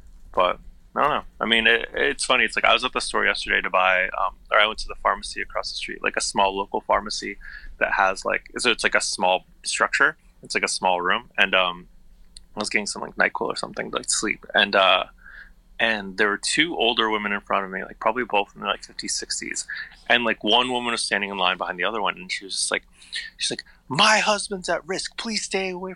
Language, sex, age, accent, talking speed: English, male, 20-39, American, 245 wpm